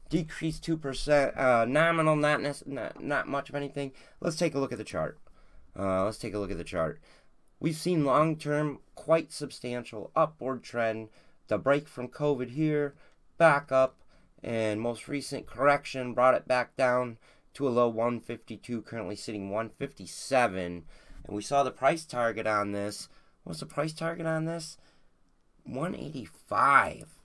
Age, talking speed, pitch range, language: 30-49, 155 wpm, 120-165 Hz, English